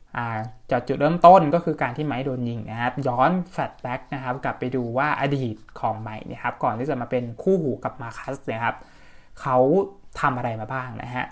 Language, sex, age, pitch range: Thai, male, 20-39, 120-155 Hz